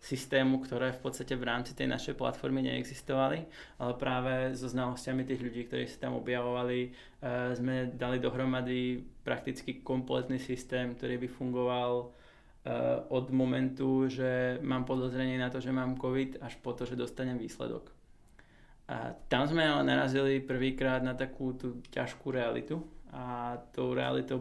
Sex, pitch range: male, 120-130 Hz